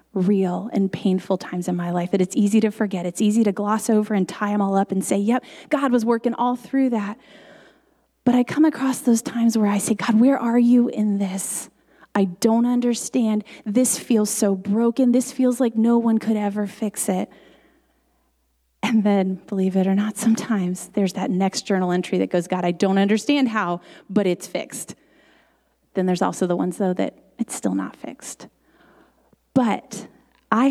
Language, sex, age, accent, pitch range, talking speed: English, female, 30-49, American, 195-255 Hz, 190 wpm